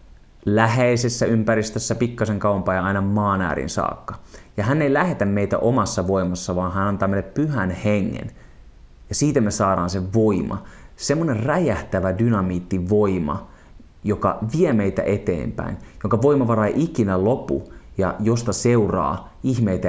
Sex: male